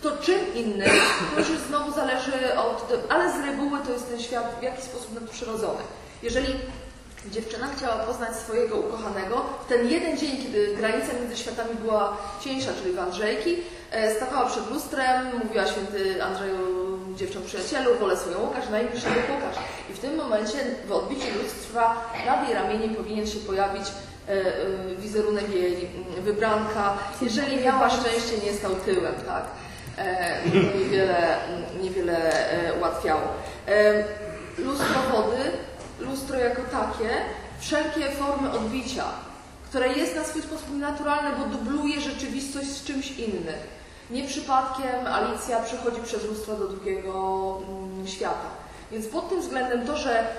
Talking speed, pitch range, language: 140 wpm, 205-265 Hz, Polish